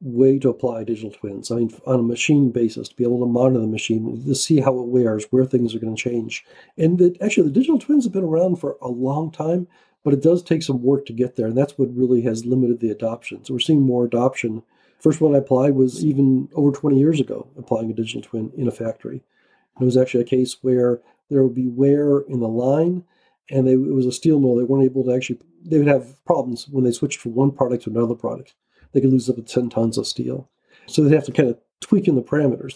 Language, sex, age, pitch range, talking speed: English, male, 50-69, 125-150 Hz, 250 wpm